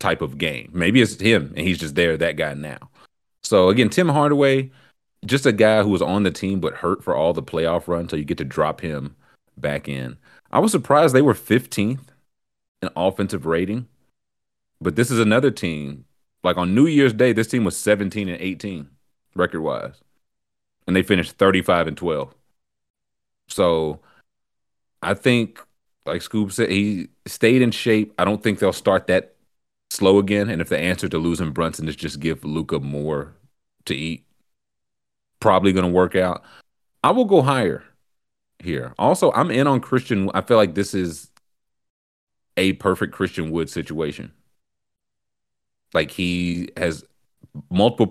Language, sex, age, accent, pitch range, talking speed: English, male, 30-49, American, 80-110 Hz, 165 wpm